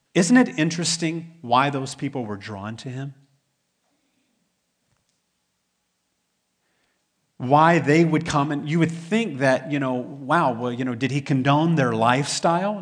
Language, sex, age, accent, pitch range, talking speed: English, male, 40-59, American, 115-165 Hz, 140 wpm